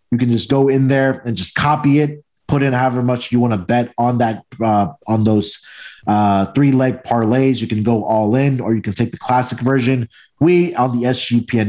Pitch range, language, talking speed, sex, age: 115-140 Hz, English, 215 wpm, male, 30-49